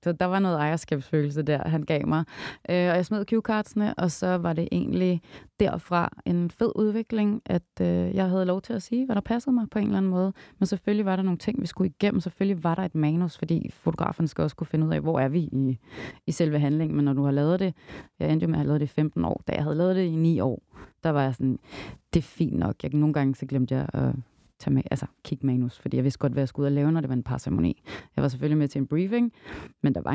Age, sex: 30-49, female